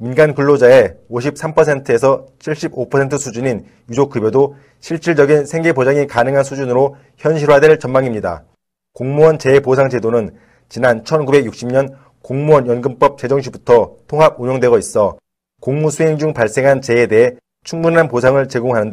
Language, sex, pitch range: Korean, male, 125-145 Hz